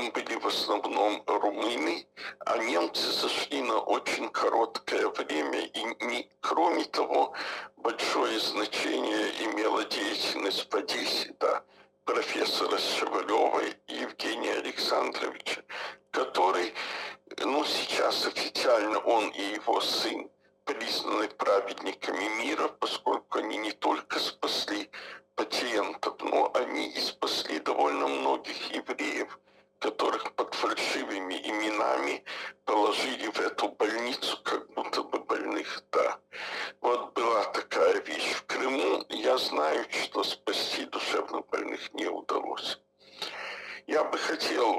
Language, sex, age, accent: Russian, male, 60-79, native